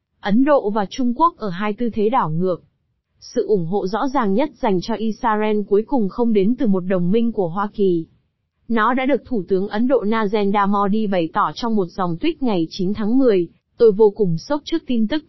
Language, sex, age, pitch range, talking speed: Vietnamese, female, 20-39, 195-240 Hz, 225 wpm